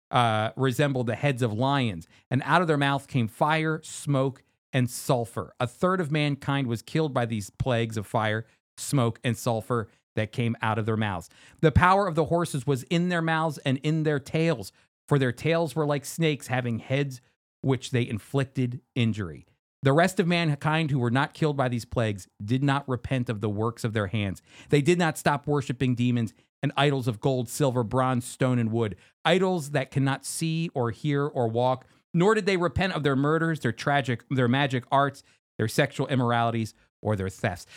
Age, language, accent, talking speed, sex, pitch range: 40-59, English, American, 195 wpm, male, 125-160 Hz